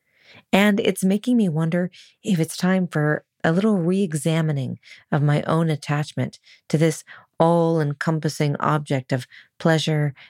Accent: American